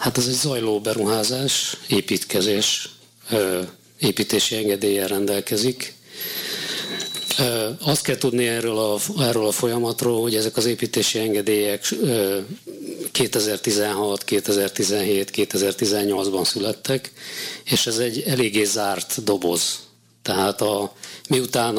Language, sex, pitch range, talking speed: Hungarian, male, 100-125 Hz, 95 wpm